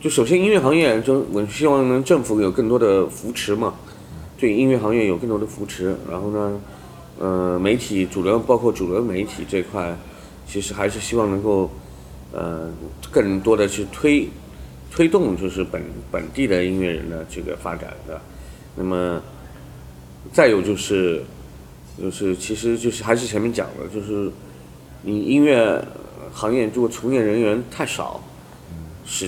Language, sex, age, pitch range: Chinese, male, 30-49, 90-105 Hz